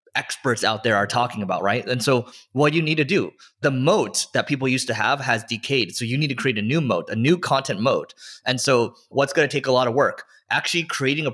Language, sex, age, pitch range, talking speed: English, male, 20-39, 115-140 Hz, 255 wpm